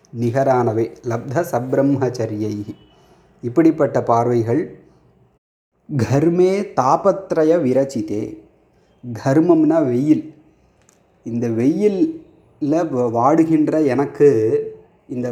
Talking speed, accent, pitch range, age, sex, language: 60 wpm, native, 120-155 Hz, 30-49, male, Tamil